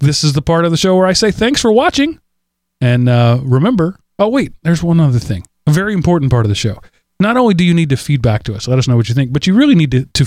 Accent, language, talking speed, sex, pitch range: American, English, 300 wpm, male, 125-170 Hz